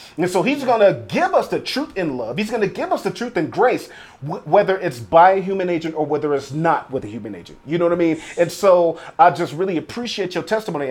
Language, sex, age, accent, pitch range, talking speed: English, male, 30-49, American, 165-205 Hz, 260 wpm